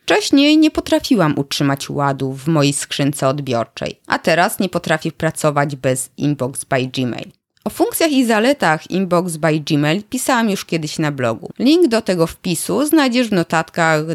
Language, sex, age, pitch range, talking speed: Polish, female, 20-39, 150-240 Hz, 155 wpm